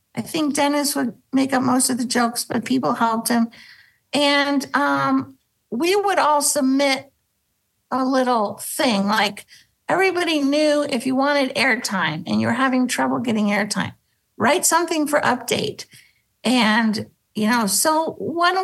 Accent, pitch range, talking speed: American, 225-275 Hz, 145 wpm